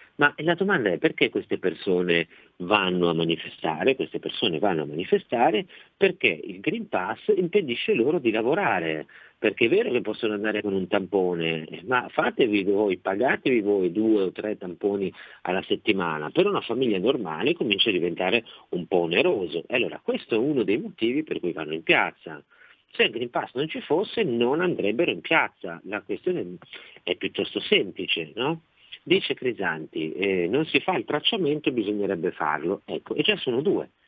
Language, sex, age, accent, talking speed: Italian, male, 50-69, native, 170 wpm